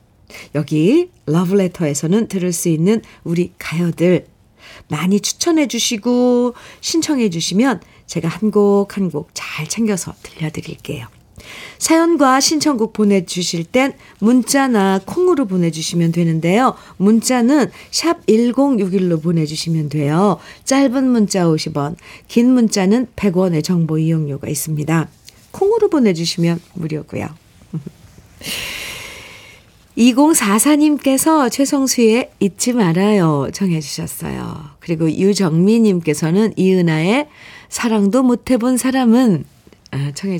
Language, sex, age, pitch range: Korean, female, 50-69, 165-245 Hz